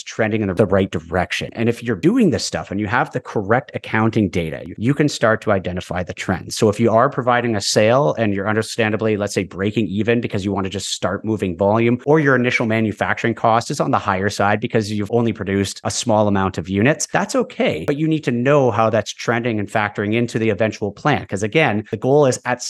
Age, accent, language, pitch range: 30-49, American, English, 100-125 Hz